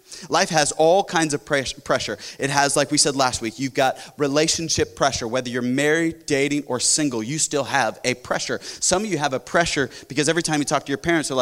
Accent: American